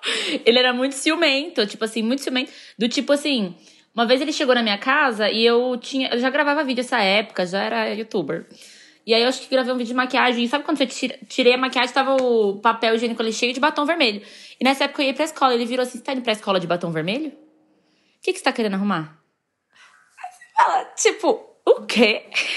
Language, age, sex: Portuguese, 10-29, female